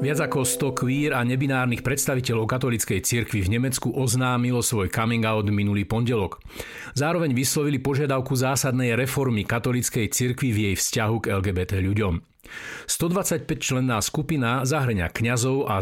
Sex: male